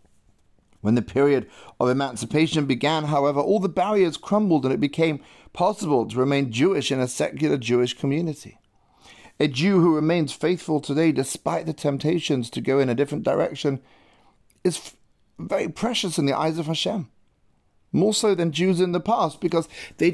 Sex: male